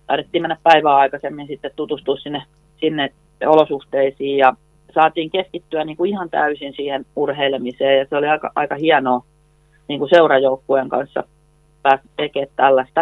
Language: Finnish